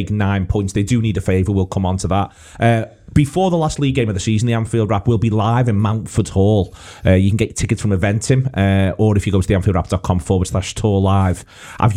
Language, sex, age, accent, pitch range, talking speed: English, male, 30-49, British, 100-115 Hz, 245 wpm